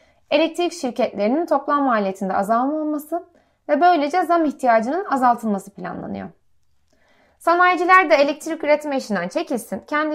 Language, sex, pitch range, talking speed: Turkish, female, 225-315 Hz, 110 wpm